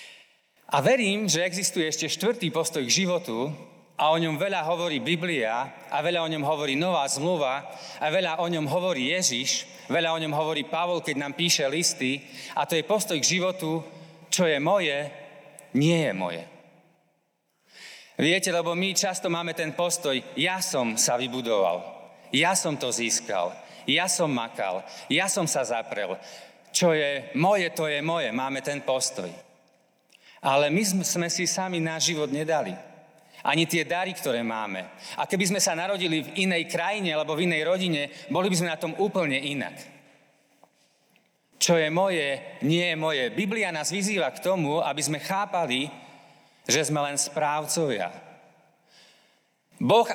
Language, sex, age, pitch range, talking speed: Slovak, male, 40-59, 145-180 Hz, 155 wpm